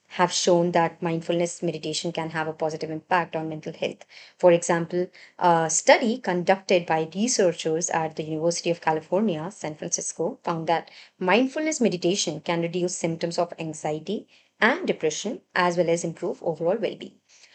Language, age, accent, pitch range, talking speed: English, 30-49, Indian, 170-200 Hz, 150 wpm